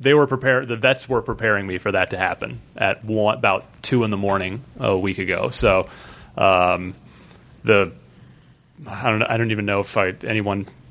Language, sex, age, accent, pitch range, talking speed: English, male, 30-49, American, 100-130 Hz, 180 wpm